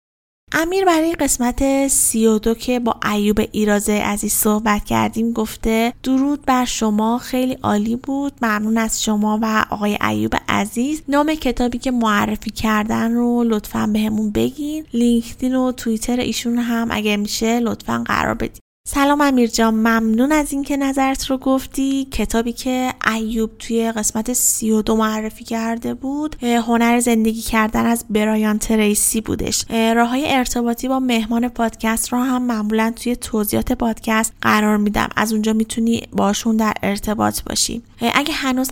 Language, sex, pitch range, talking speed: Persian, female, 215-250 Hz, 140 wpm